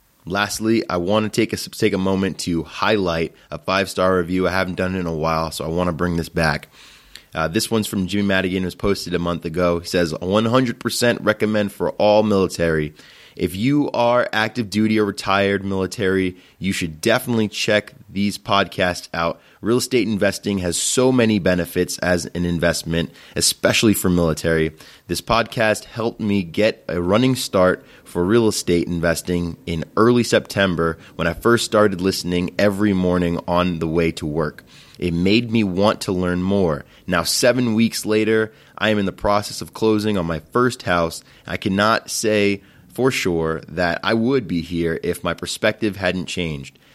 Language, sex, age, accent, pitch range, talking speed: English, male, 20-39, American, 85-110 Hz, 175 wpm